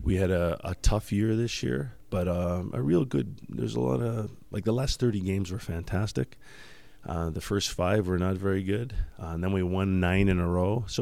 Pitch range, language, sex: 80-95 Hz, English, male